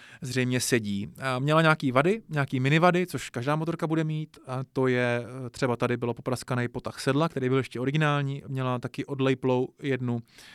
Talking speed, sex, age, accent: 175 wpm, male, 20-39, native